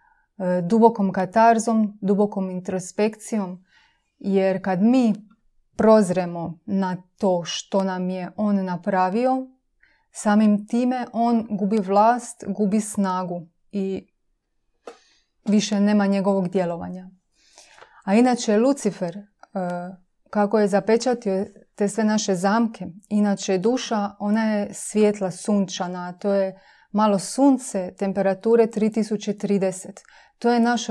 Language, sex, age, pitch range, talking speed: Croatian, female, 30-49, 190-220 Hz, 100 wpm